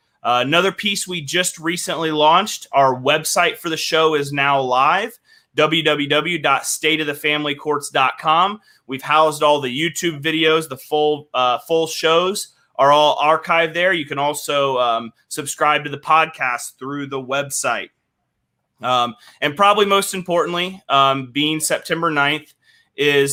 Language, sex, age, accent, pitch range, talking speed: English, male, 30-49, American, 140-170 Hz, 135 wpm